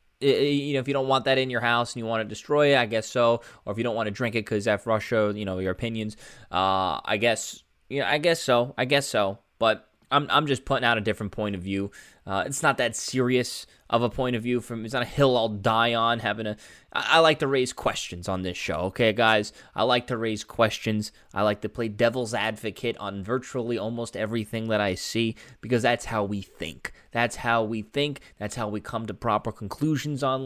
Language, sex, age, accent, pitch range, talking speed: English, male, 20-39, American, 105-125 Hz, 240 wpm